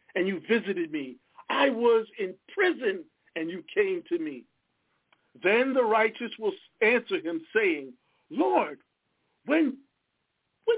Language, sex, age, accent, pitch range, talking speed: English, male, 50-69, American, 210-335 Hz, 130 wpm